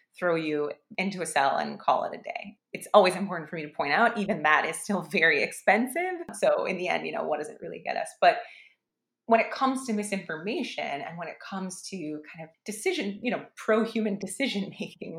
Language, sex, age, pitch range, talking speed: English, female, 30-49, 165-215 Hz, 220 wpm